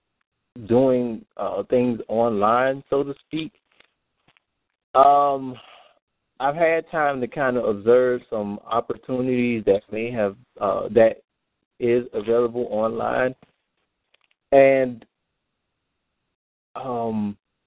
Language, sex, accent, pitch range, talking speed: English, male, American, 115-140 Hz, 90 wpm